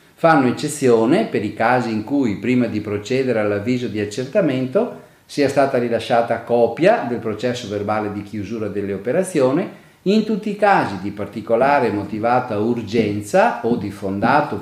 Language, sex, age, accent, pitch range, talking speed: Italian, male, 40-59, native, 110-165 Hz, 145 wpm